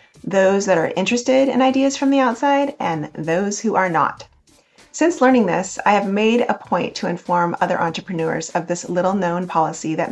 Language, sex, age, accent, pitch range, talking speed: English, female, 30-49, American, 170-220 Hz, 190 wpm